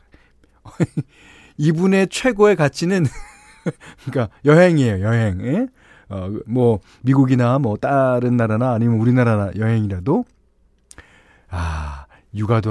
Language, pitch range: Korean, 105-160 Hz